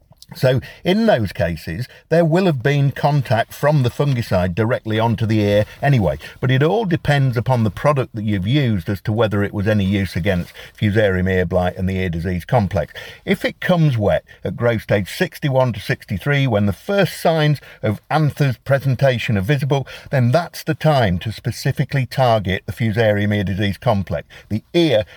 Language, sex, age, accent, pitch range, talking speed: English, male, 50-69, British, 105-150 Hz, 180 wpm